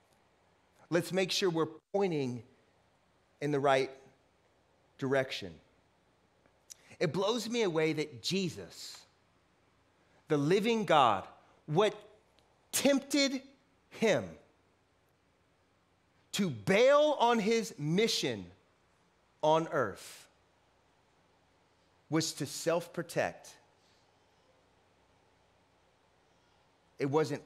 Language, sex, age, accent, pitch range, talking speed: English, male, 30-49, American, 100-155 Hz, 75 wpm